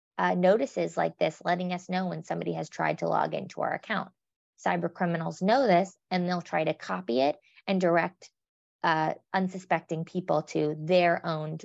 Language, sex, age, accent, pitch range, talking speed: English, female, 20-39, American, 165-200 Hz, 175 wpm